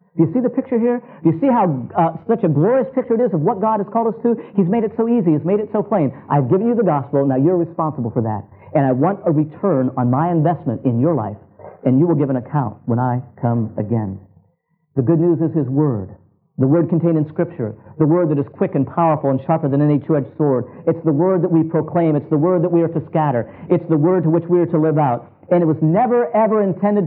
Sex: male